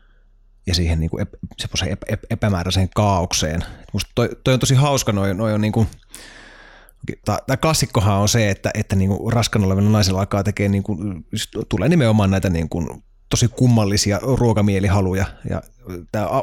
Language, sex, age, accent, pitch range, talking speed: Finnish, male, 30-49, native, 100-130 Hz, 155 wpm